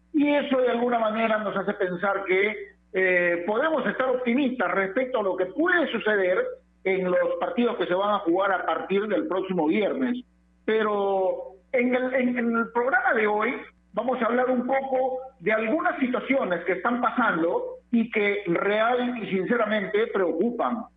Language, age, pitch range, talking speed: Spanish, 50-69, 180-255 Hz, 160 wpm